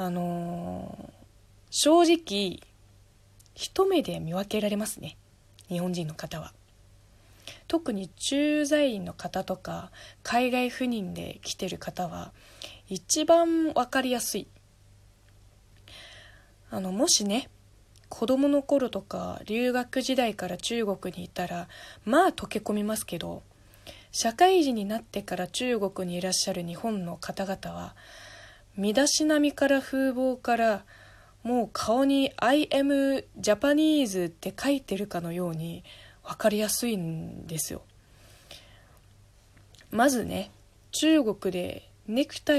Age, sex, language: 20-39, female, Japanese